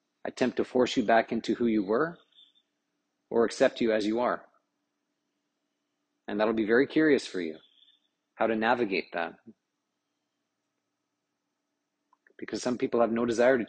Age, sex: 40-59, male